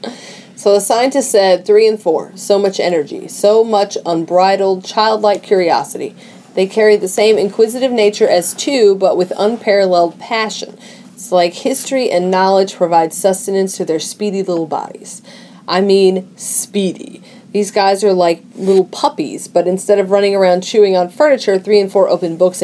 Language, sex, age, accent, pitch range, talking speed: English, female, 30-49, American, 175-220 Hz, 160 wpm